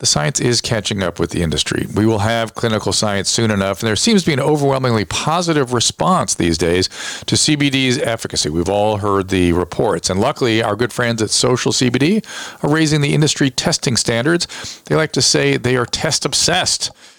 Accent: American